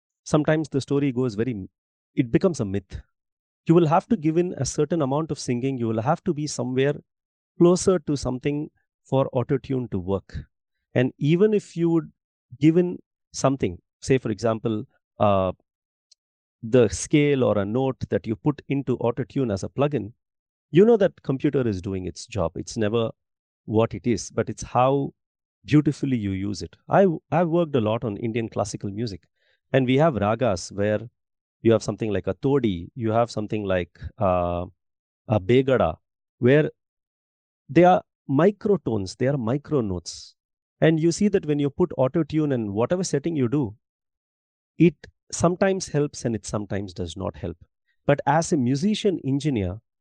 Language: English